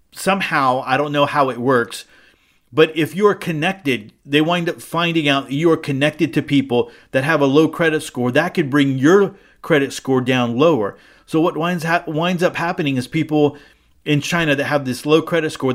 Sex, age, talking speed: male, 40-59, 200 wpm